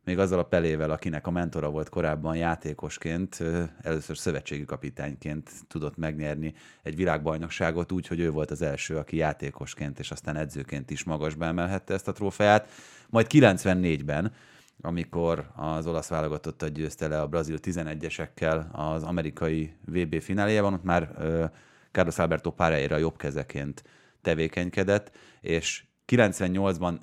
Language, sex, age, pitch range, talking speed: Hungarian, male, 30-49, 75-90 Hz, 130 wpm